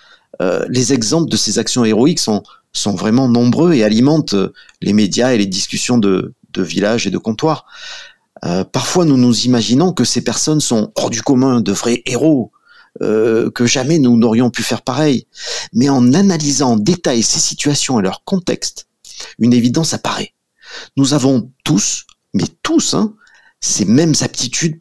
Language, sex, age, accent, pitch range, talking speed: French, male, 50-69, French, 110-150 Hz, 165 wpm